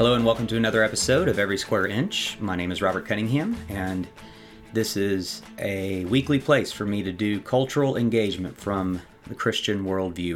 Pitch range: 95-115 Hz